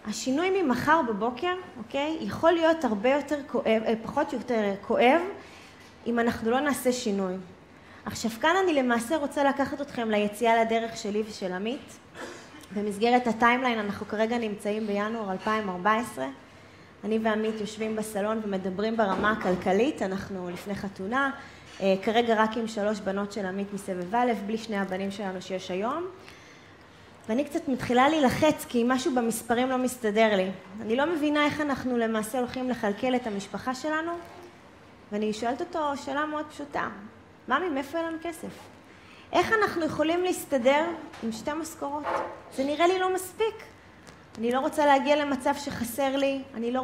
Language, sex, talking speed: Hebrew, female, 150 wpm